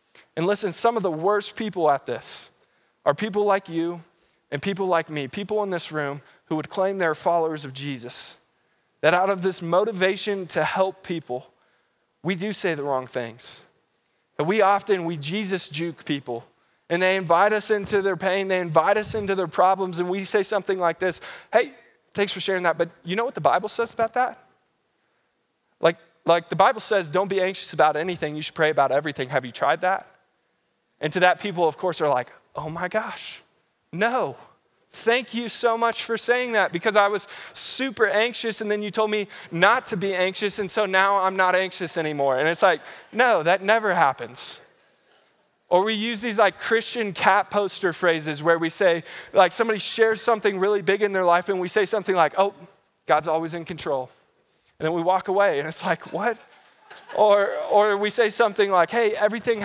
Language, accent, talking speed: English, American, 195 wpm